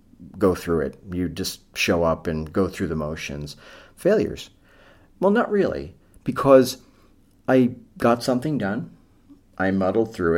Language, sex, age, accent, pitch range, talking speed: English, male, 40-59, American, 90-115 Hz, 140 wpm